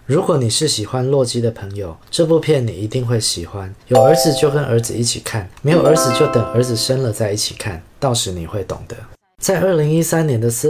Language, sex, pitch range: Chinese, male, 105-145 Hz